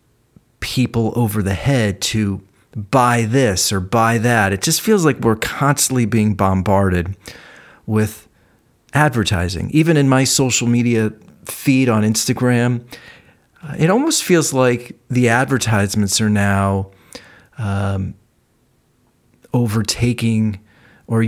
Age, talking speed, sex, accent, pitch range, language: 40-59, 110 wpm, male, American, 100-125 Hz, English